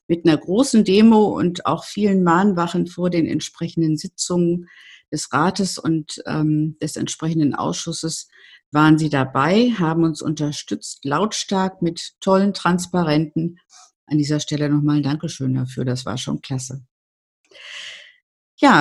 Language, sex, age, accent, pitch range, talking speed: German, female, 50-69, German, 155-190 Hz, 130 wpm